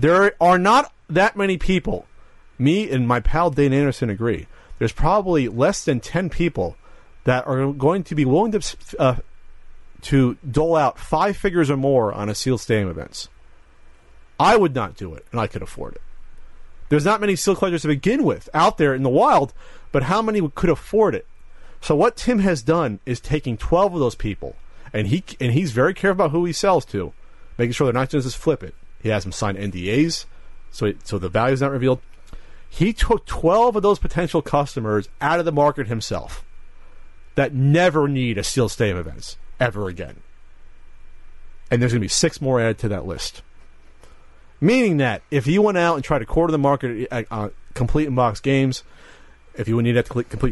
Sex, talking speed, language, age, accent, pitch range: male, 200 wpm, English, 40-59, American, 105-165 Hz